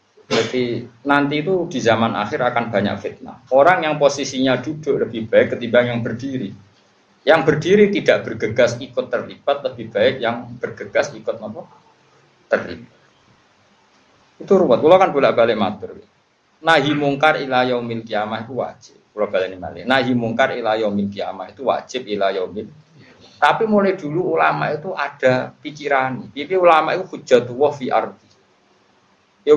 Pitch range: 115-165 Hz